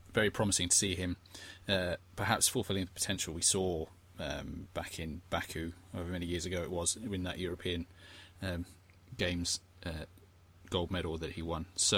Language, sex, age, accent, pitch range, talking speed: English, male, 30-49, British, 90-105 Hz, 170 wpm